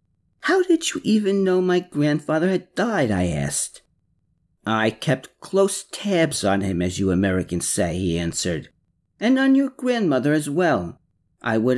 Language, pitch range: English, 105-165 Hz